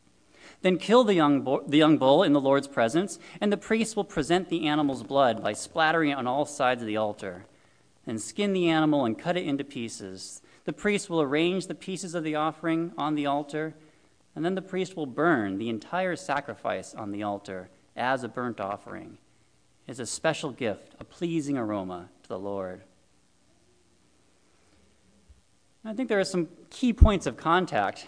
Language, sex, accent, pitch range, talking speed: English, male, American, 115-170 Hz, 180 wpm